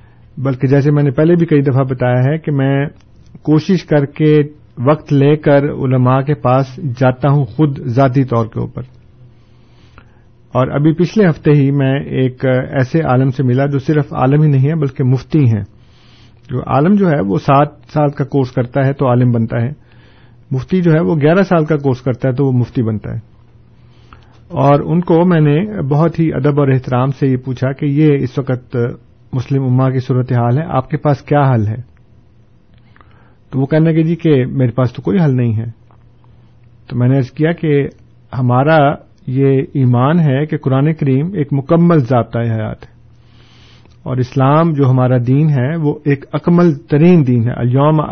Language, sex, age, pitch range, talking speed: Urdu, male, 50-69, 120-150 Hz, 190 wpm